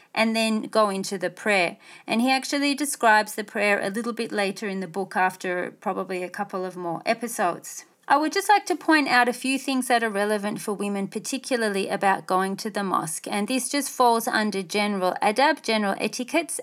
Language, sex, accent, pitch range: English, female, Australian, 200-255 Hz